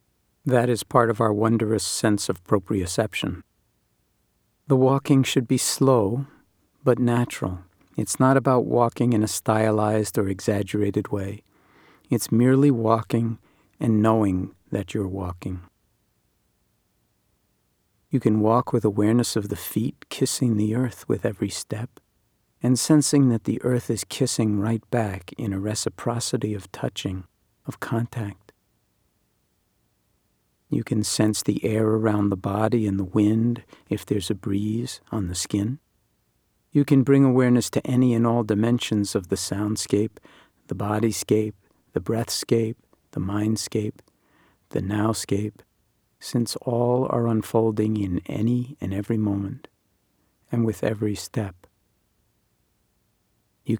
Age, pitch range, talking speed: 50-69, 100-120 Hz, 130 wpm